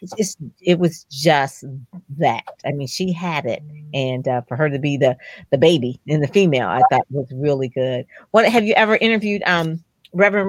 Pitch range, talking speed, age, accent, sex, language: 145-185 Hz, 200 wpm, 40-59, American, female, English